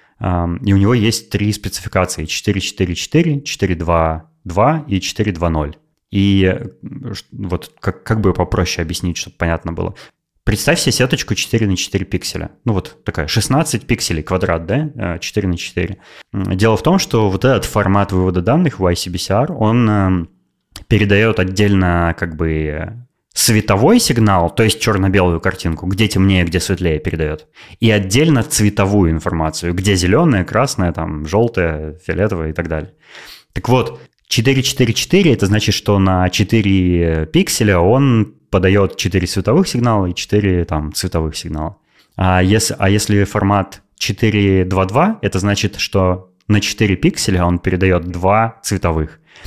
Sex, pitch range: male, 90-110 Hz